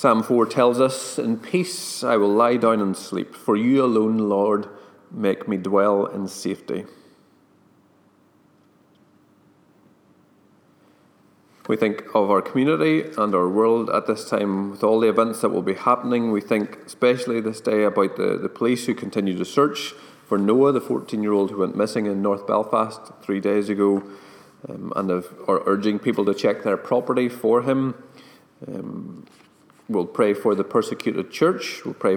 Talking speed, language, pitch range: 165 wpm, English, 100-120 Hz